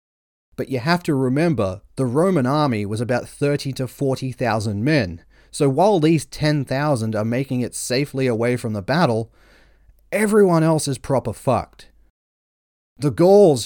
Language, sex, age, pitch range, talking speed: English, male, 30-49, 110-145 Hz, 145 wpm